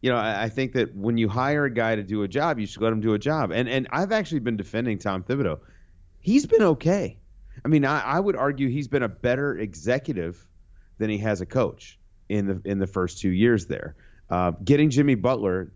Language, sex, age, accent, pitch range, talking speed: English, male, 30-49, American, 95-130 Hz, 230 wpm